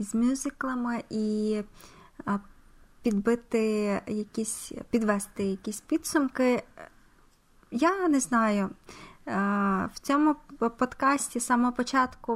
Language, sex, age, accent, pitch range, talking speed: Ukrainian, female, 20-39, native, 215-250 Hz, 85 wpm